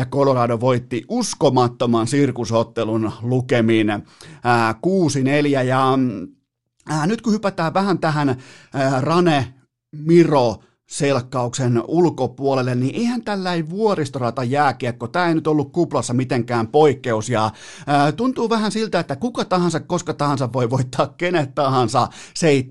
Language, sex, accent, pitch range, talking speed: Finnish, male, native, 120-155 Hz, 120 wpm